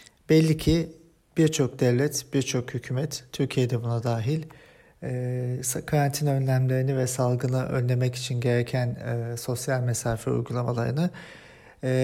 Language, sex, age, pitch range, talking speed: German, male, 40-59, 125-145 Hz, 110 wpm